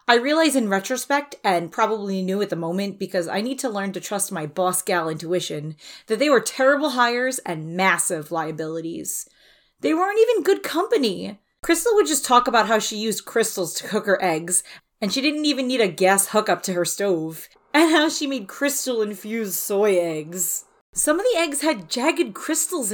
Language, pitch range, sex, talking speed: English, 185-280 Hz, female, 185 wpm